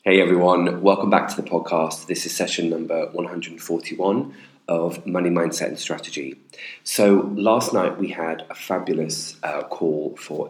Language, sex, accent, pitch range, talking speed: English, male, British, 80-95 Hz, 150 wpm